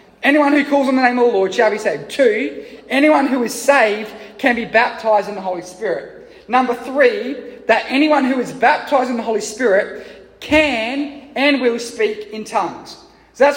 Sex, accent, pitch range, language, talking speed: male, Australian, 220-255 Hz, English, 190 wpm